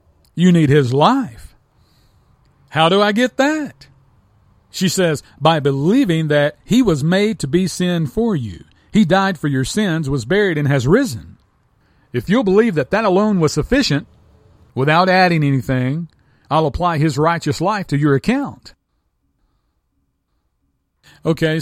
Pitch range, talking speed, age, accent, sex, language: 130-180 Hz, 145 wpm, 40-59, American, male, English